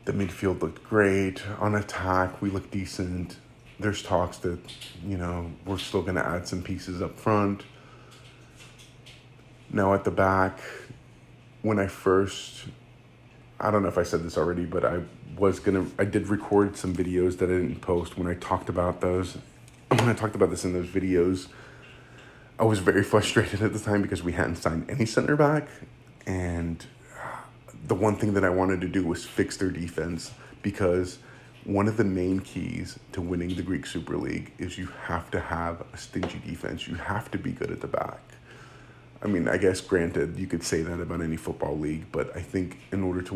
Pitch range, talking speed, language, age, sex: 90-110 Hz, 190 wpm, English, 30-49, male